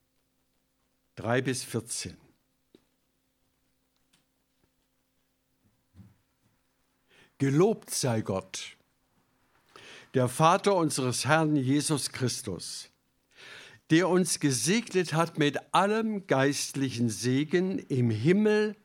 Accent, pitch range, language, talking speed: German, 125-165 Hz, German, 70 wpm